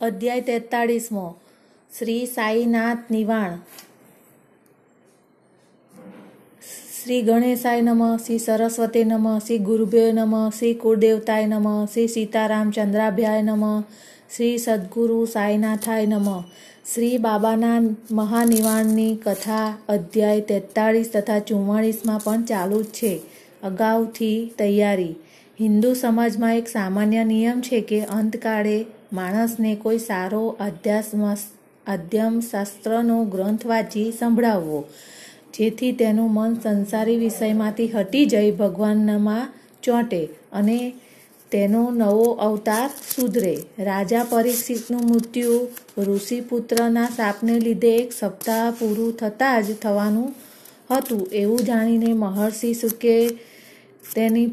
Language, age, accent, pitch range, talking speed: Gujarati, 30-49, native, 210-235 Hz, 95 wpm